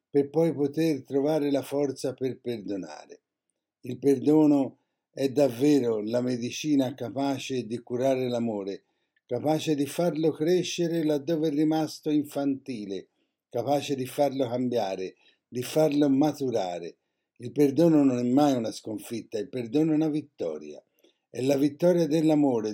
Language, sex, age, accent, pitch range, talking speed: Italian, male, 50-69, native, 125-155 Hz, 130 wpm